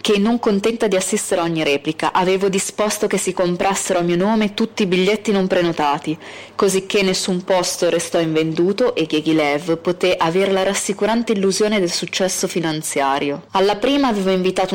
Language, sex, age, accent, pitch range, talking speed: Italian, female, 20-39, native, 170-200 Hz, 165 wpm